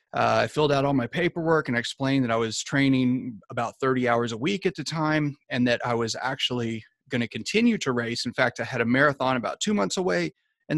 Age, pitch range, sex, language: 30-49, 120-155 Hz, male, English